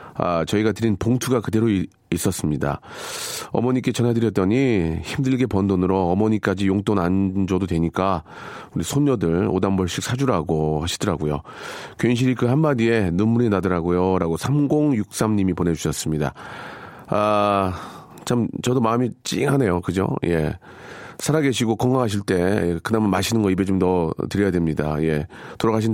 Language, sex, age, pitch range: Korean, male, 40-59, 90-125 Hz